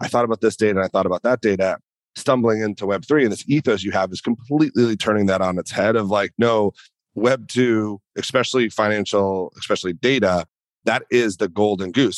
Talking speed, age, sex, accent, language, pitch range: 190 wpm, 30-49, male, American, English, 100-120 Hz